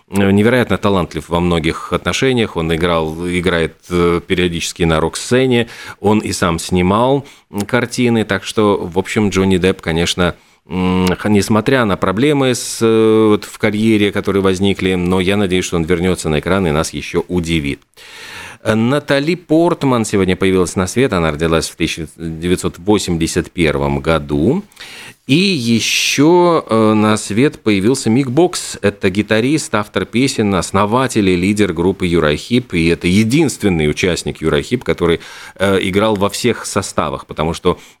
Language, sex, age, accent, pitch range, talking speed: Russian, male, 40-59, native, 85-110 Hz, 125 wpm